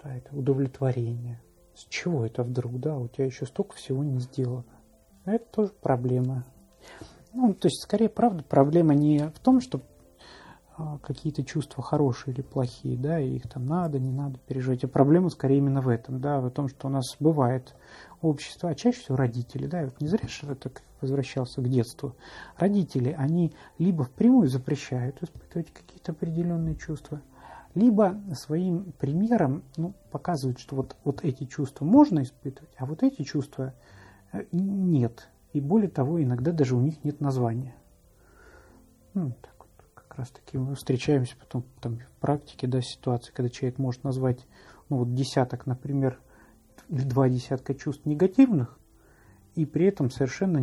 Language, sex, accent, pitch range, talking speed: Russian, male, native, 130-160 Hz, 160 wpm